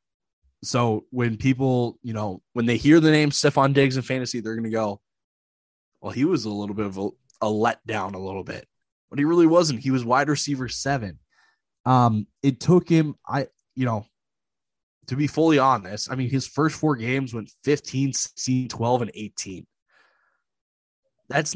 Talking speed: 175 wpm